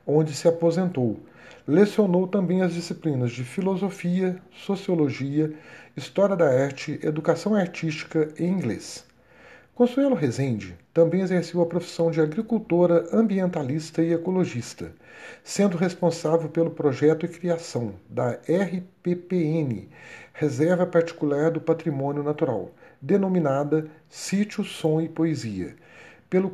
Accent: Brazilian